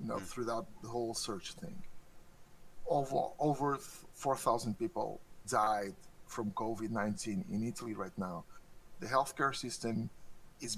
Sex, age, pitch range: male, 50-69, 110-160 Hz